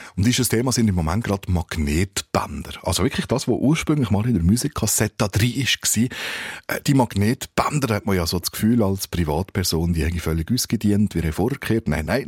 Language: German